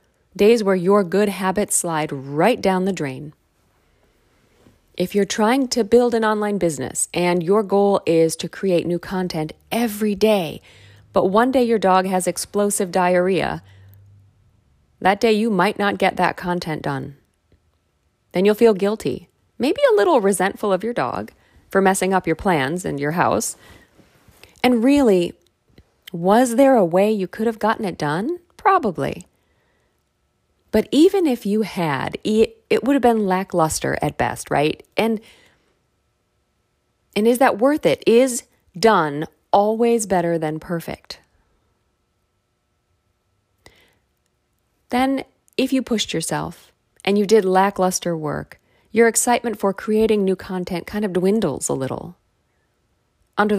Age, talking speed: 40-59, 140 wpm